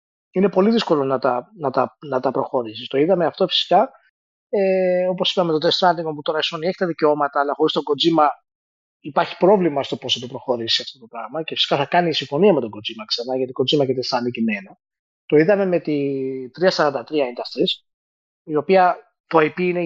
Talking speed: 195 wpm